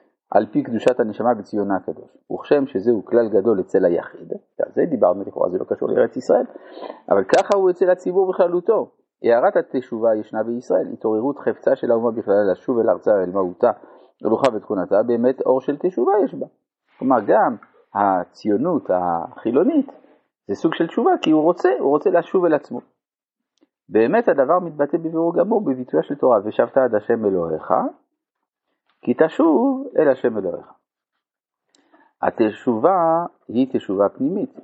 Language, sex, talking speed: Hebrew, male, 150 wpm